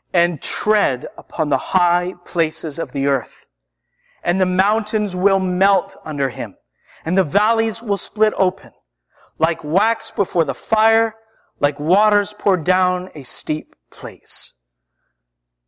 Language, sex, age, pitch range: English, male, 40-59, 135-210 Hz